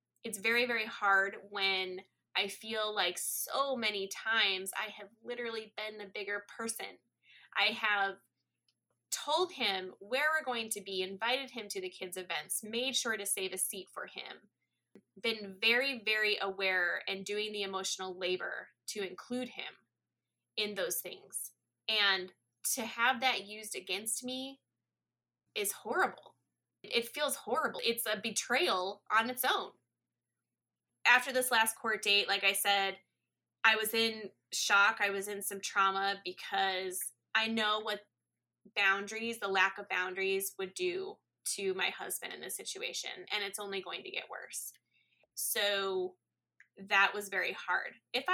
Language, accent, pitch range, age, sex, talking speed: English, American, 195-230 Hz, 20-39, female, 150 wpm